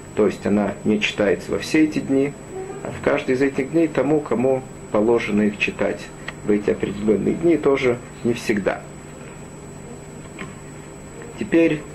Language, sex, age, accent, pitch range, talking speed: Russian, male, 40-59, native, 105-130 Hz, 140 wpm